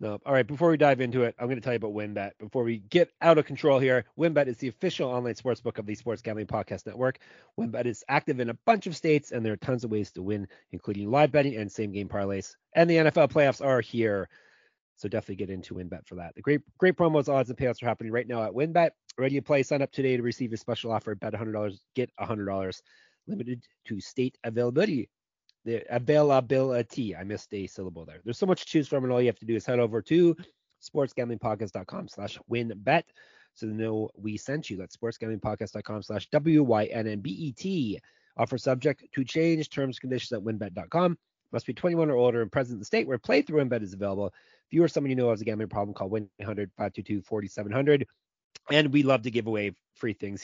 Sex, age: male, 30-49